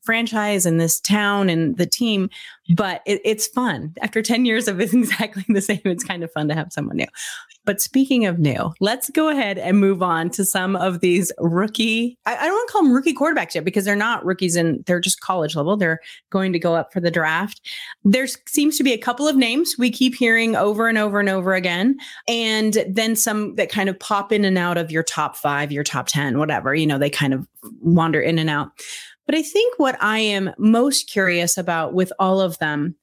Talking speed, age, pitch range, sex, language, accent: 225 wpm, 30-49, 175-240 Hz, female, English, American